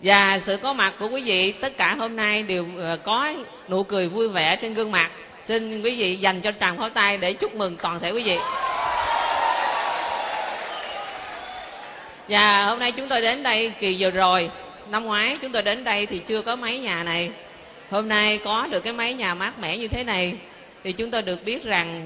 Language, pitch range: Vietnamese, 185-225 Hz